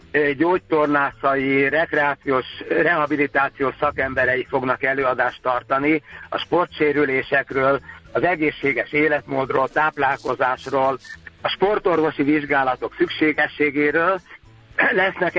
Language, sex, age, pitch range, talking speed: Hungarian, male, 60-79, 135-160 Hz, 70 wpm